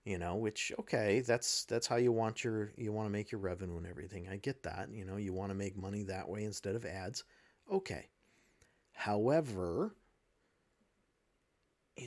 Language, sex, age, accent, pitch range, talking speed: English, male, 40-59, American, 95-140 Hz, 180 wpm